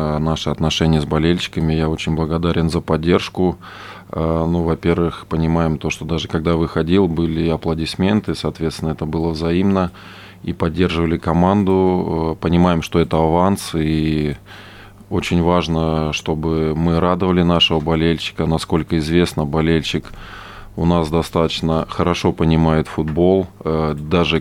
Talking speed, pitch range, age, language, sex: 120 wpm, 80-90 Hz, 20-39, Russian, male